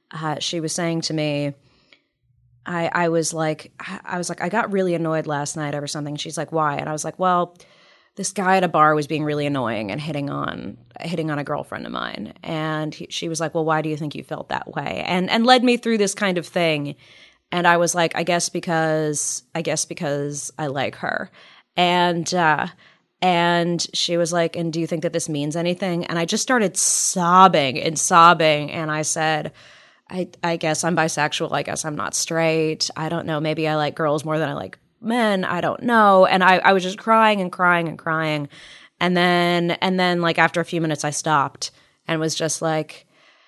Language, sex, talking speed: English, female, 215 wpm